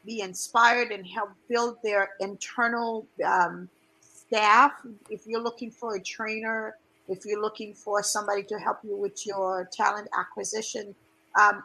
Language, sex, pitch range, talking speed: English, female, 195-230 Hz, 145 wpm